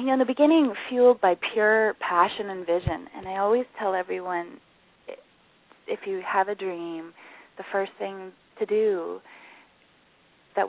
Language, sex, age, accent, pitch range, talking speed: English, female, 20-39, American, 185-225 Hz, 150 wpm